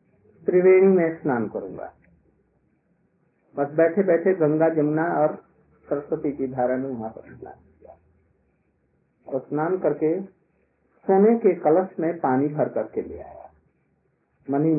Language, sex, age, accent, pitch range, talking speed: Hindi, male, 50-69, native, 145-195 Hz, 120 wpm